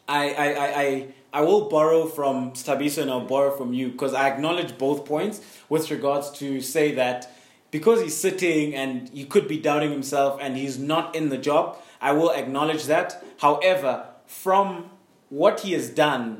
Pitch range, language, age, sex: 130-165 Hz, English, 20-39, male